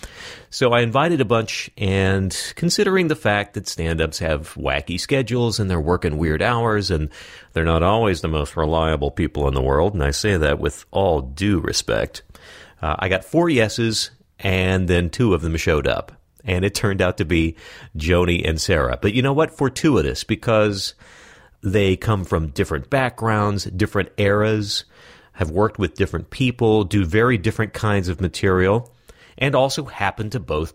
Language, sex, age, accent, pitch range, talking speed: English, male, 40-59, American, 85-110 Hz, 170 wpm